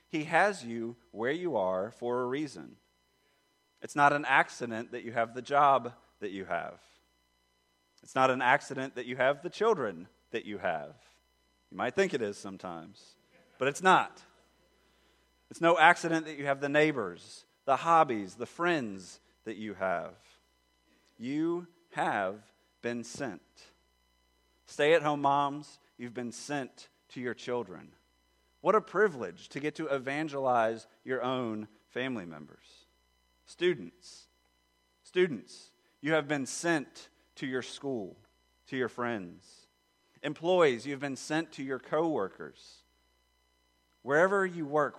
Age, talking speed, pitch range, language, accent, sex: 30-49, 135 wpm, 110-155 Hz, English, American, male